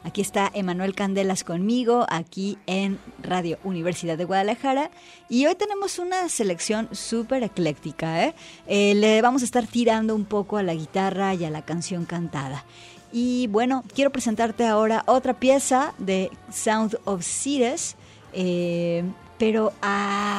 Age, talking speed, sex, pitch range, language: 30-49, 140 wpm, female, 170-220 Hz, Spanish